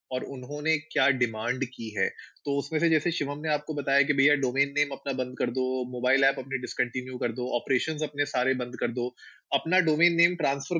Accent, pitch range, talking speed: native, 120-145 Hz, 190 wpm